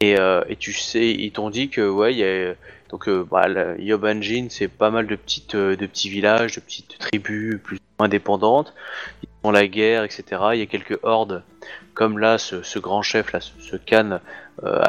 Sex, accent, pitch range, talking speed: male, French, 95-110 Hz, 200 wpm